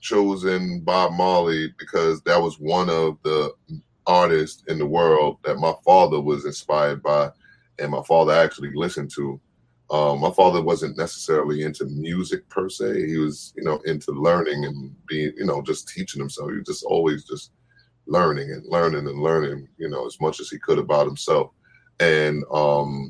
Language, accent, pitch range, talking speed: English, American, 75-85 Hz, 175 wpm